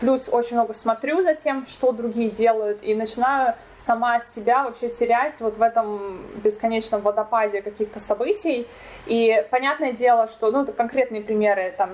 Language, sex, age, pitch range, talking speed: Russian, female, 20-39, 210-245 Hz, 155 wpm